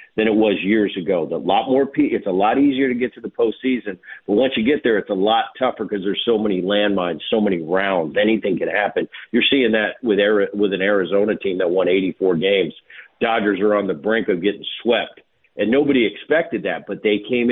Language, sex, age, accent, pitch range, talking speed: English, male, 50-69, American, 105-140 Hz, 210 wpm